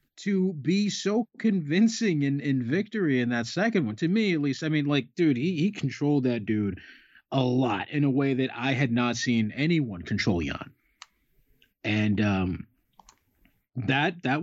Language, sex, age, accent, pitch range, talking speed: English, male, 30-49, American, 110-155 Hz, 170 wpm